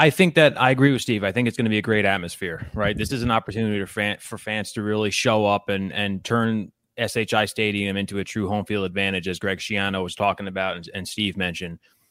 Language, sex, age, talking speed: English, male, 20-39, 240 wpm